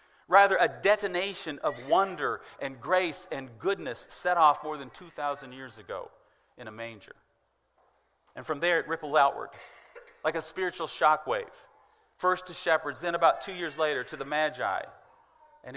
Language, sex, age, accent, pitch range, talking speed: English, male, 40-59, American, 140-200 Hz, 155 wpm